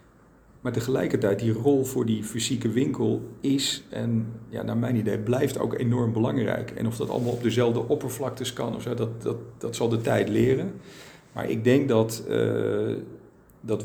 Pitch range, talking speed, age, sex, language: 105-120 Hz, 180 wpm, 40-59, male, Dutch